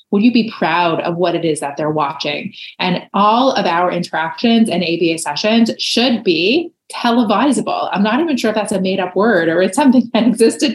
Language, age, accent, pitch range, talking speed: English, 30-49, American, 175-215 Hz, 205 wpm